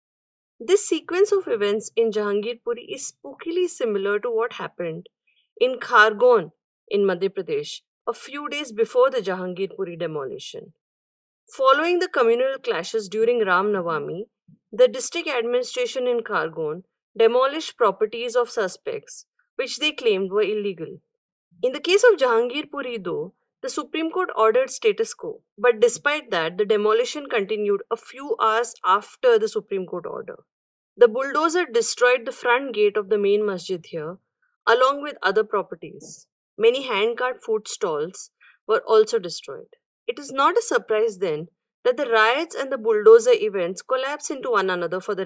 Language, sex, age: English, female, 30-49